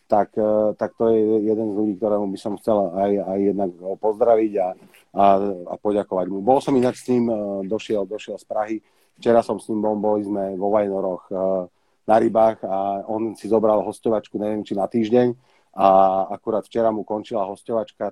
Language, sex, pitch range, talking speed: Slovak, male, 100-110 Hz, 180 wpm